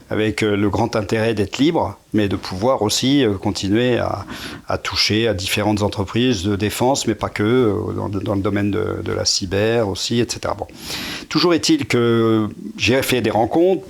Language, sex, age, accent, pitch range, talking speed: French, male, 40-59, French, 105-125 Hz, 175 wpm